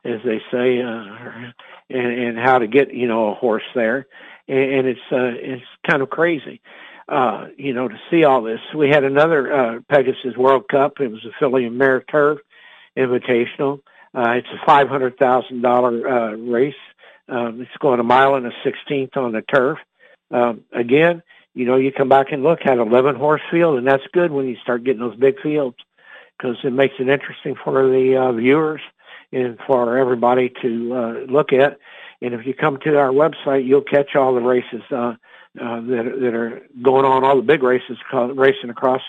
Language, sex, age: English, male, 60-79